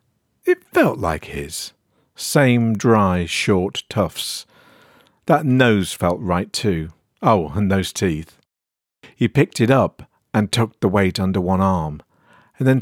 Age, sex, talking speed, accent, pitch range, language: 50-69, male, 140 wpm, British, 95-125 Hz, English